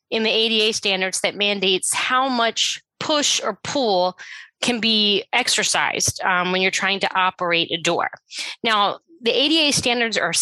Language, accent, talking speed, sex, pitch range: English, American, 155 wpm, female, 180-235 Hz